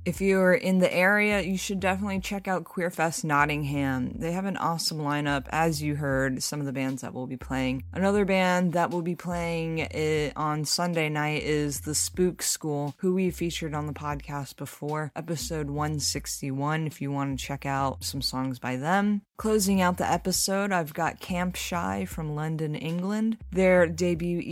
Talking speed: 180 wpm